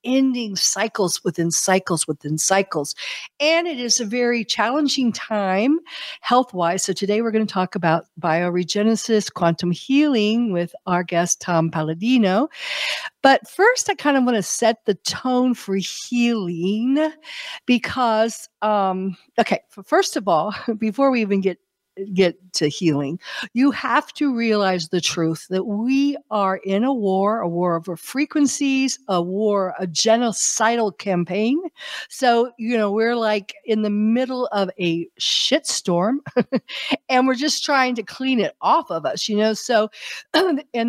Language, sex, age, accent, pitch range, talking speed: English, female, 60-79, American, 185-245 Hz, 150 wpm